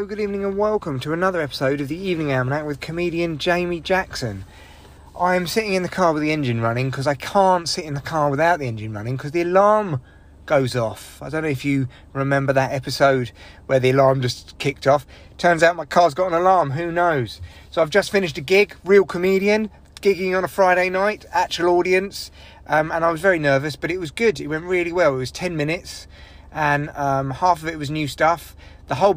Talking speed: 220 wpm